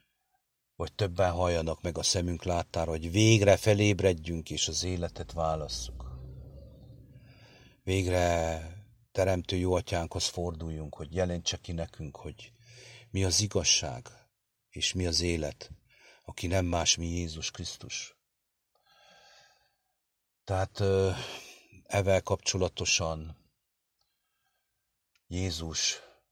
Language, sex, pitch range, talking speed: English, male, 80-90 Hz, 95 wpm